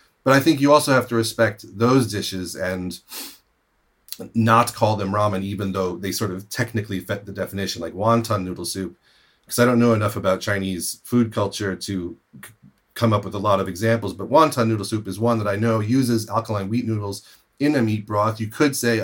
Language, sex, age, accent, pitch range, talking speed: English, male, 30-49, American, 95-115 Hz, 205 wpm